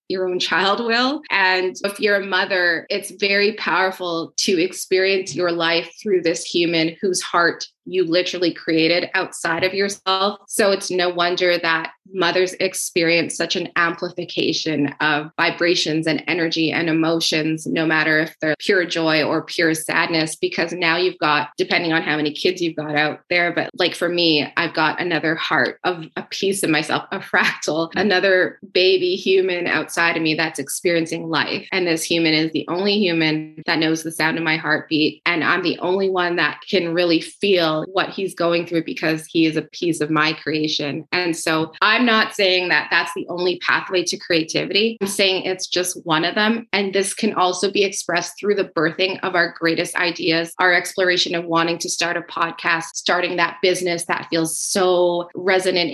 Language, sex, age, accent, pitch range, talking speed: English, female, 20-39, American, 160-185 Hz, 185 wpm